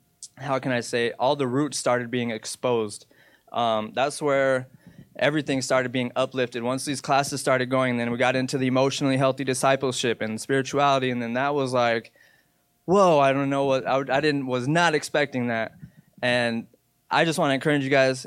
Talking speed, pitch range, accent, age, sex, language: 185 wpm, 125-145 Hz, American, 20-39, male, English